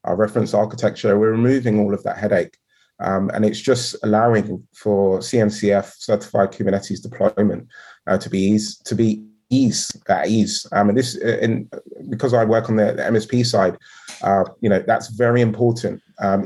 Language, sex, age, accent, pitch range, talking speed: English, male, 30-49, British, 105-120 Hz, 160 wpm